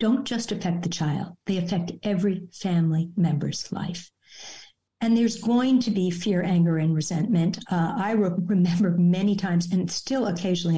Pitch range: 170-215 Hz